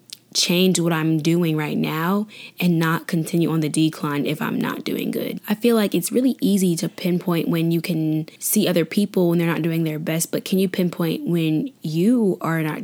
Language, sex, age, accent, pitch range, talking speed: English, female, 10-29, American, 160-190 Hz, 210 wpm